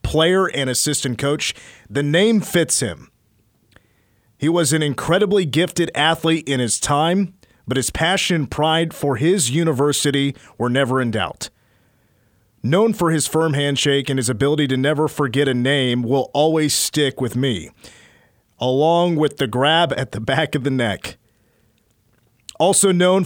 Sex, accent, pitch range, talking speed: male, American, 115-155 Hz, 150 wpm